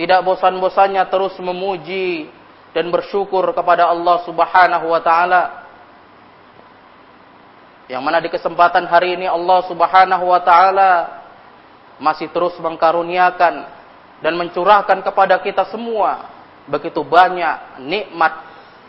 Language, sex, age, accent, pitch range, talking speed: Indonesian, male, 20-39, native, 170-200 Hz, 100 wpm